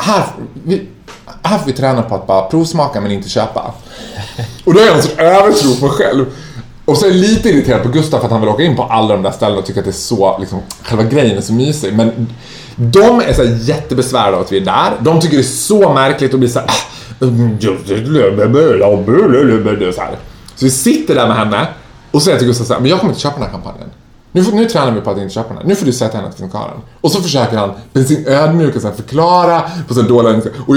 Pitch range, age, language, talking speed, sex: 115-170 Hz, 20-39, Swedish, 235 wpm, male